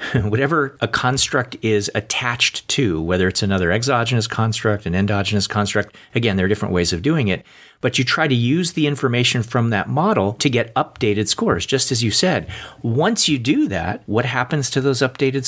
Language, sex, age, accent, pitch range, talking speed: English, male, 40-59, American, 105-140 Hz, 190 wpm